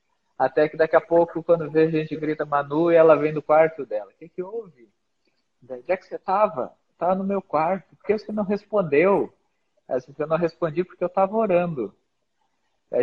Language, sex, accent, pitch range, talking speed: Portuguese, male, Brazilian, 145-180 Hz, 205 wpm